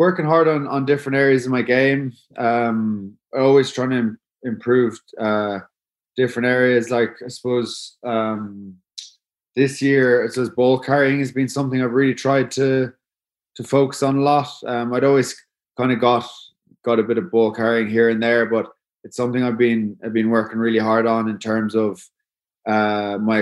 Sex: male